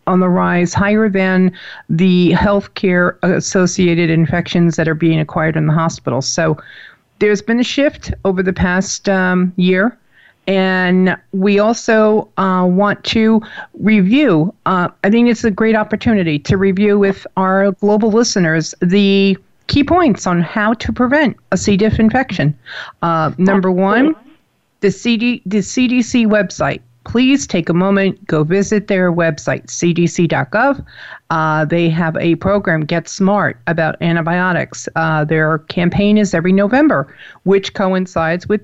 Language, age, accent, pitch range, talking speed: English, 50-69, American, 170-210 Hz, 140 wpm